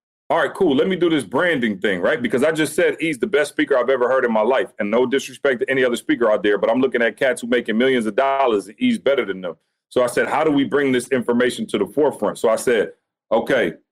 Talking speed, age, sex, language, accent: 275 wpm, 40-59, male, English, American